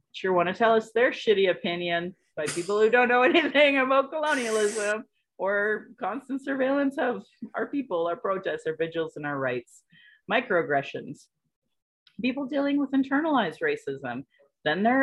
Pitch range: 145-205 Hz